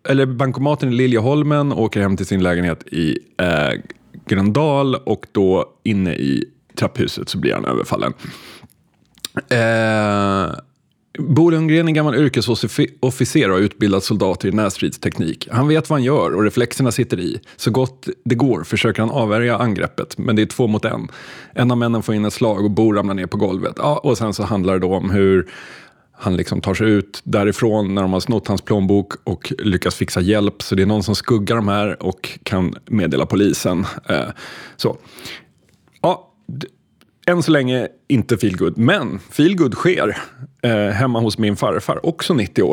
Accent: native